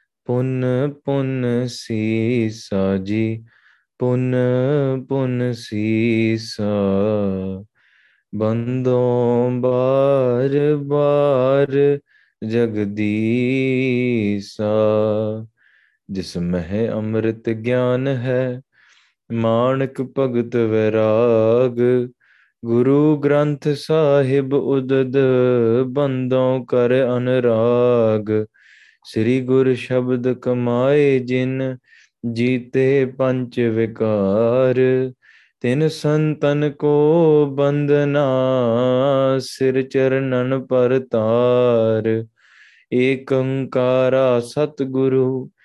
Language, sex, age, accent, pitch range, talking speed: English, male, 20-39, Indian, 115-135 Hz, 55 wpm